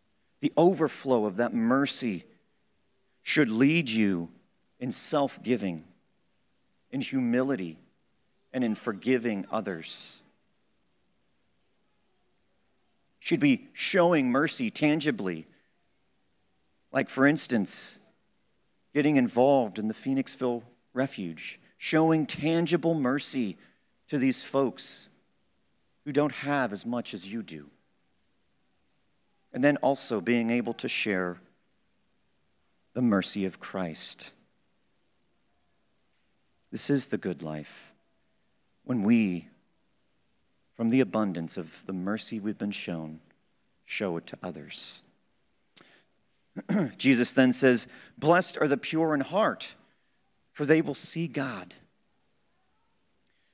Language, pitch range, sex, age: English, 100-150 Hz, male, 50-69